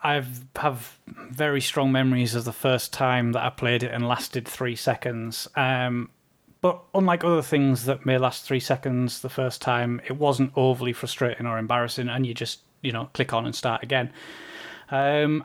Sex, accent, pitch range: male, British, 125-150 Hz